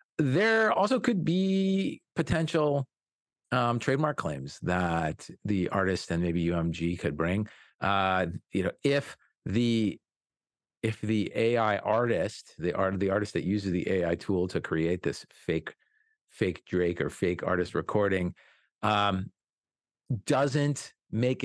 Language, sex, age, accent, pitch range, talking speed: English, male, 40-59, American, 85-125 Hz, 130 wpm